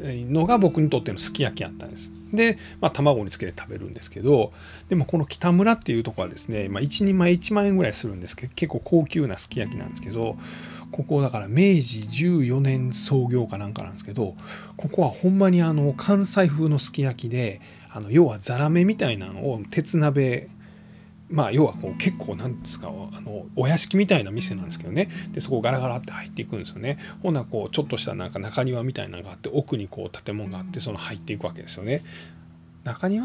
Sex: male